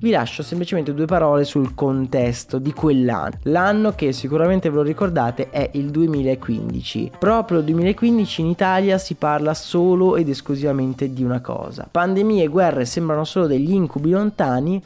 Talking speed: 160 wpm